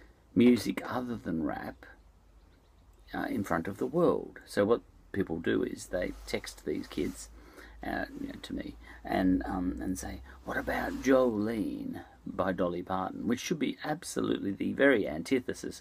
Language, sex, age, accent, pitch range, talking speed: English, male, 50-69, Australian, 90-120 Hz, 155 wpm